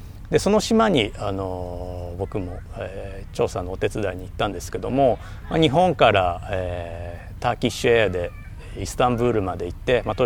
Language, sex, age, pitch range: Japanese, male, 40-59, 95-145 Hz